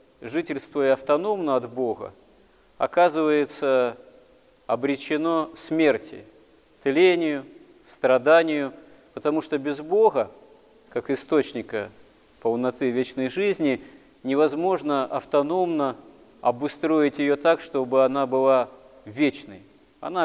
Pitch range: 130-165 Hz